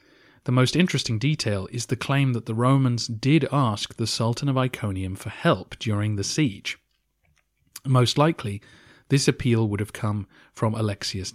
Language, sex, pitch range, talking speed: English, male, 105-130 Hz, 160 wpm